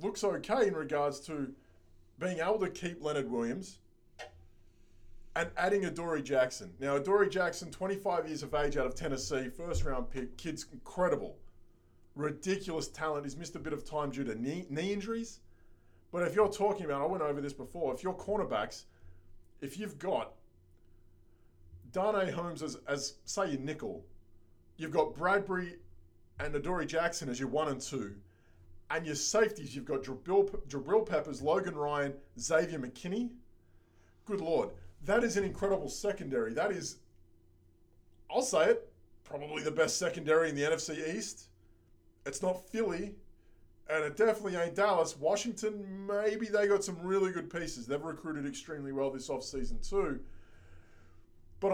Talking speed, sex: 150 wpm, male